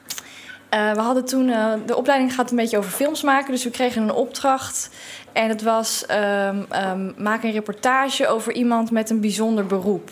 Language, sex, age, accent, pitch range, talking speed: Dutch, female, 20-39, Dutch, 210-255 Hz, 190 wpm